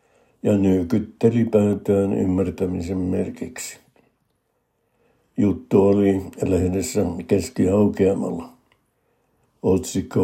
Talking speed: 60 wpm